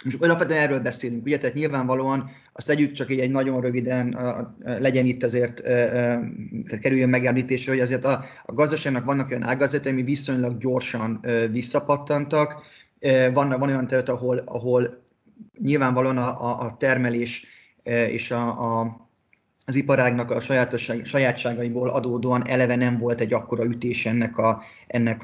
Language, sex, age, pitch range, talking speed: Hungarian, male, 30-49, 120-135 Hz, 140 wpm